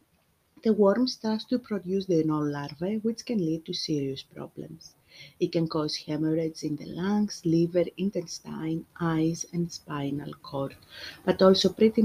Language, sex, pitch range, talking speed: English, female, 145-195 Hz, 150 wpm